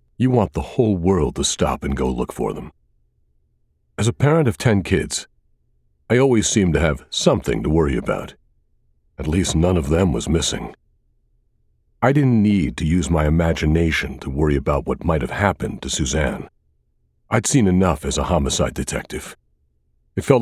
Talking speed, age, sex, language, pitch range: 175 wpm, 50-69, male, English, 70-115 Hz